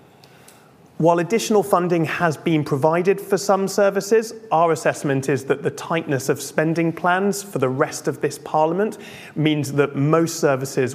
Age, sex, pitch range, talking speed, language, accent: 30-49, male, 130-155 Hz, 155 wpm, English, British